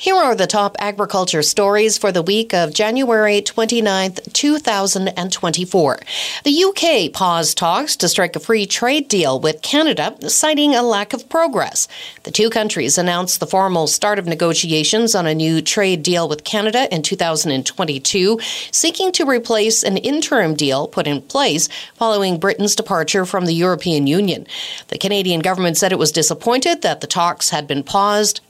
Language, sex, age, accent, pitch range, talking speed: English, female, 40-59, American, 165-220 Hz, 160 wpm